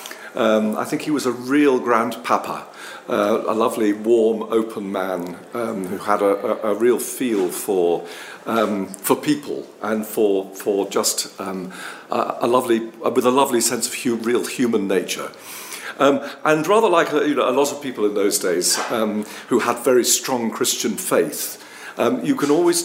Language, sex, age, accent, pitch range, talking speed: English, male, 50-69, British, 110-150 Hz, 175 wpm